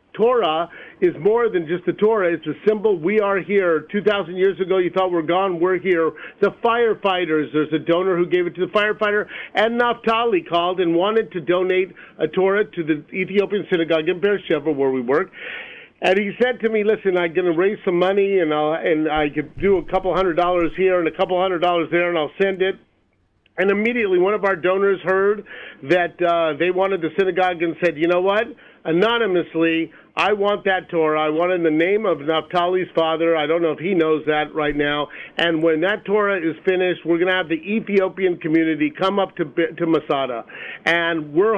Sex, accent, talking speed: male, American, 210 wpm